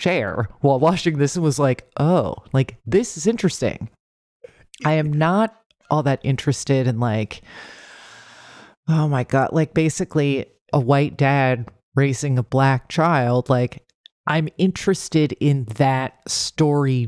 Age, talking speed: 30-49, 135 wpm